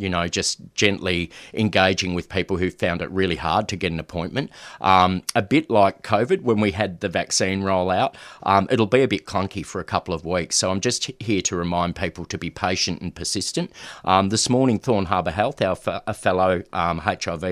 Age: 40-59